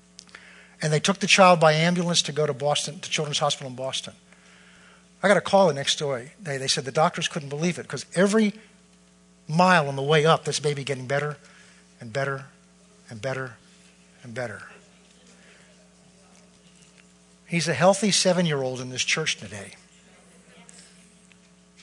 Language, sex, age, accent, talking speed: English, male, 50-69, American, 160 wpm